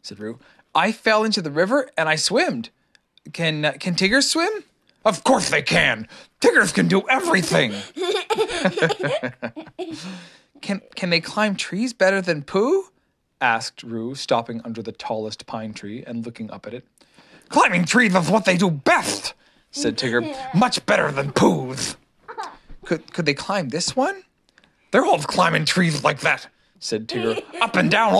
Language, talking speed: English, 155 wpm